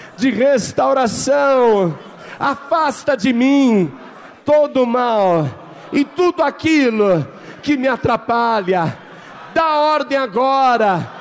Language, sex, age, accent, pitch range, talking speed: Portuguese, male, 50-69, Brazilian, 190-265 Hz, 90 wpm